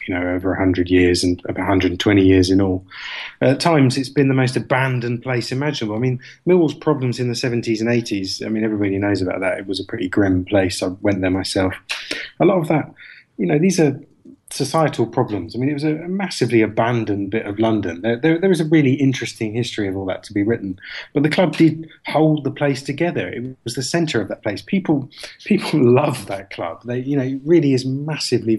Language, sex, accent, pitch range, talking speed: English, male, British, 110-135 Hz, 220 wpm